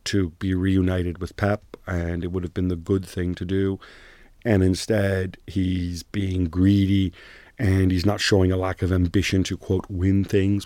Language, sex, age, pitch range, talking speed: English, male, 40-59, 90-110 Hz, 180 wpm